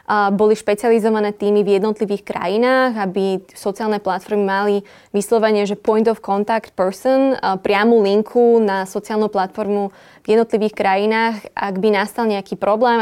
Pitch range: 200-230 Hz